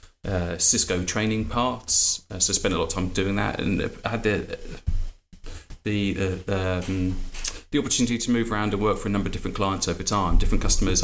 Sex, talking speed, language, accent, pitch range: male, 205 wpm, English, British, 90-115 Hz